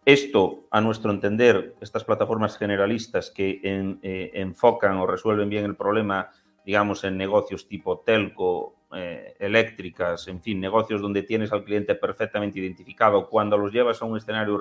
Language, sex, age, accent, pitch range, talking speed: Spanish, male, 30-49, Spanish, 100-120 Hz, 155 wpm